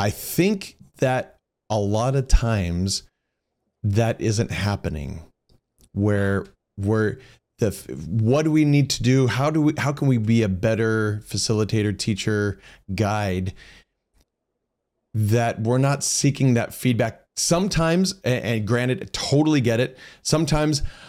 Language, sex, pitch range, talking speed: English, male, 100-125 Hz, 130 wpm